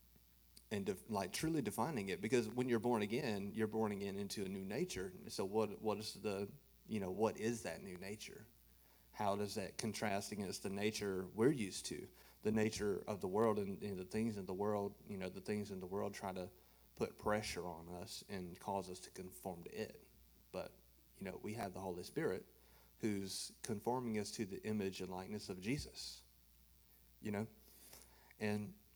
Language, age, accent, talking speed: English, 30-49, American, 195 wpm